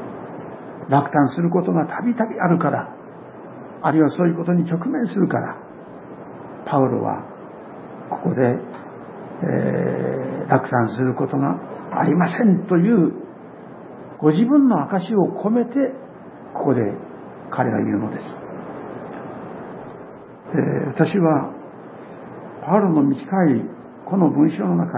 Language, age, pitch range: Japanese, 60-79, 145-215 Hz